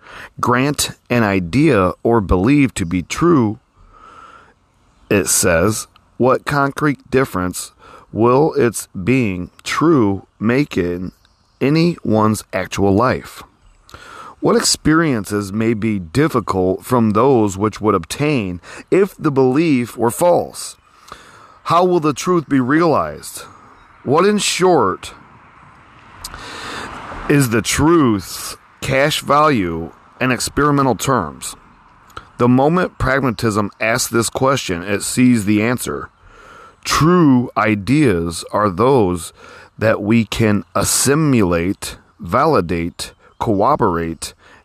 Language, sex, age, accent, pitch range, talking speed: English, male, 40-59, American, 95-135 Hz, 100 wpm